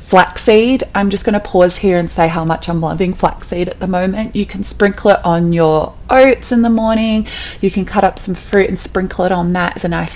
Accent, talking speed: Australian, 235 wpm